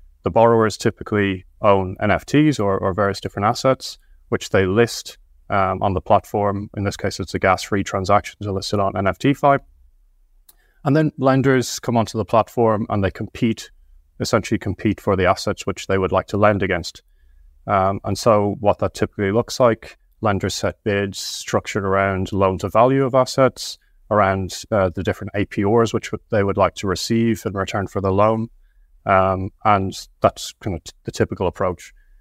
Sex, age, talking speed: male, 30-49, 165 wpm